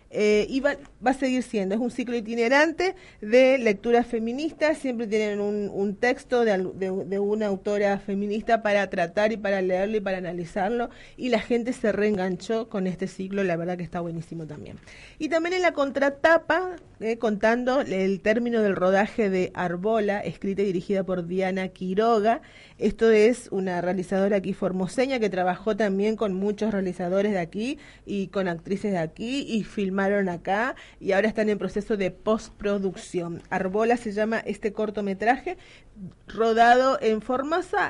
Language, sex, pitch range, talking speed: Spanish, female, 185-230 Hz, 165 wpm